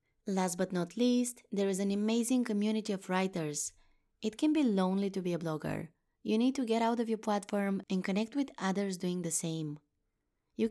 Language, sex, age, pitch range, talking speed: English, female, 20-39, 175-230 Hz, 195 wpm